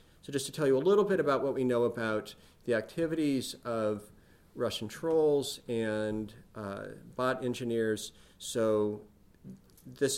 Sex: male